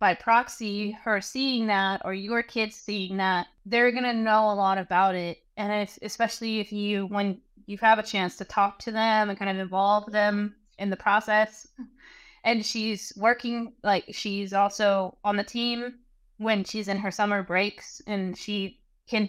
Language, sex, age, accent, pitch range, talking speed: English, female, 20-39, American, 195-230 Hz, 175 wpm